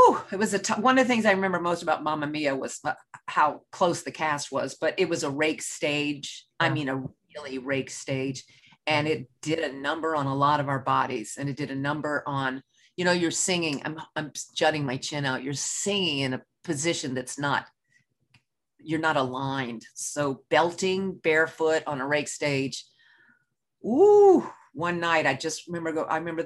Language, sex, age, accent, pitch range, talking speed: English, female, 40-59, American, 145-205 Hz, 195 wpm